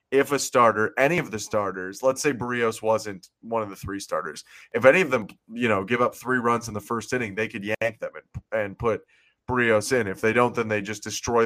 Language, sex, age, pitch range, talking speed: English, male, 20-39, 105-125 Hz, 240 wpm